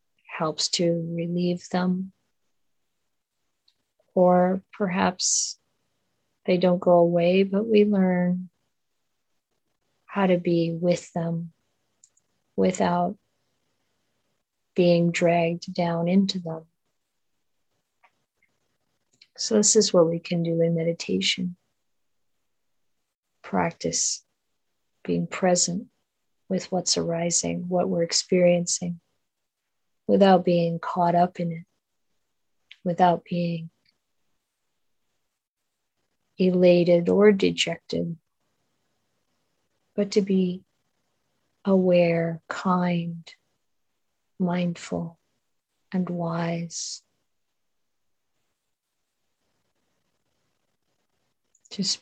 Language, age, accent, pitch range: English, 40-59, American, 170-185 Hz